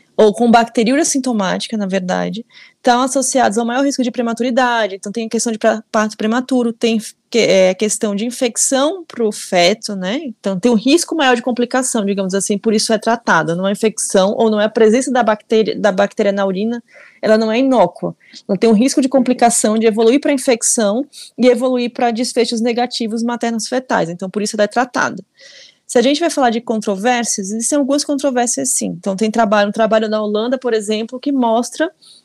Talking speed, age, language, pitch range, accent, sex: 195 wpm, 20-39, Portuguese, 220-255 Hz, Brazilian, female